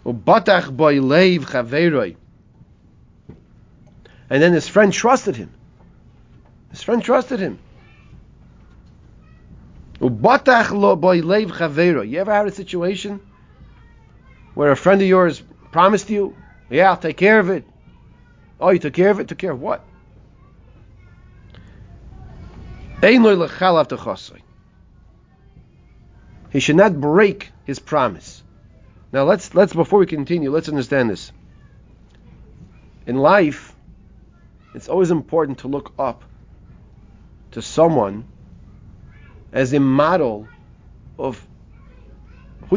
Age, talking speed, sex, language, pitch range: 40-59, 95 wpm, male, English, 125-190 Hz